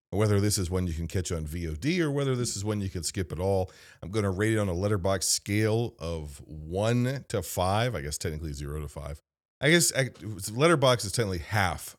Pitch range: 85-110 Hz